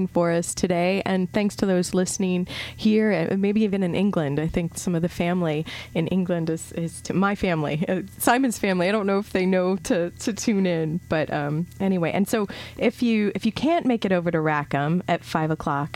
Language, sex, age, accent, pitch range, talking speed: English, female, 30-49, American, 160-195 Hz, 220 wpm